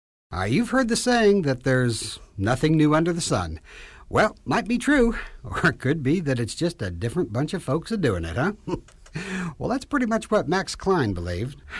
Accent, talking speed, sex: American, 210 wpm, male